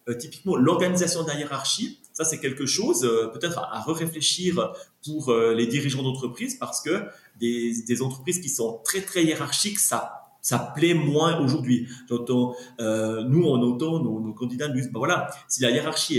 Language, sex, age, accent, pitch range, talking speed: French, male, 30-49, French, 115-150 Hz, 180 wpm